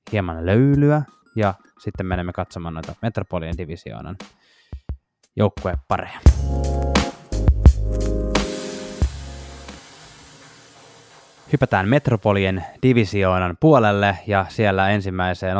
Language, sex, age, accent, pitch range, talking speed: Finnish, male, 20-39, native, 95-120 Hz, 60 wpm